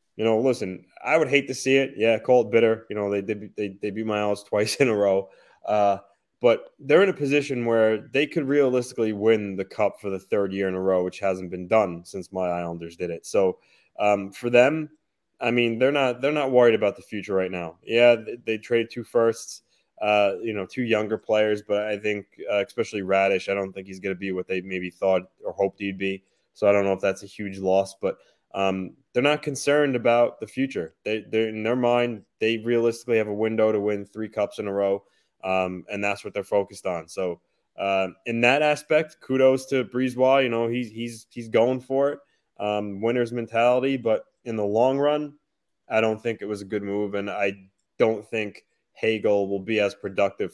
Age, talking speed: 20-39, 220 wpm